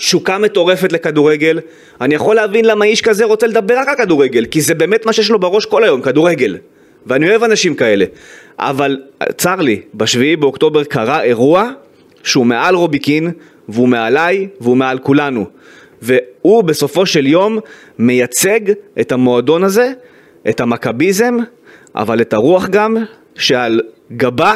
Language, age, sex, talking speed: Hebrew, 30-49, male, 145 wpm